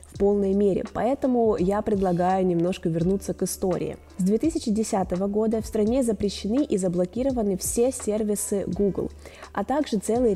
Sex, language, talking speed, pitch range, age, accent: female, Russian, 135 wpm, 185-225 Hz, 20-39, native